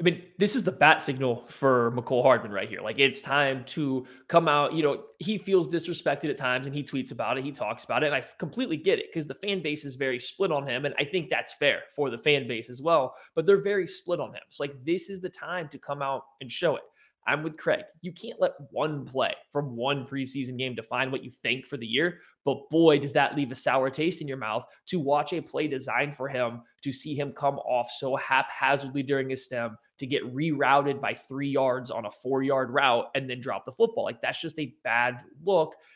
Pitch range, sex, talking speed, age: 130-155 Hz, male, 245 wpm, 20-39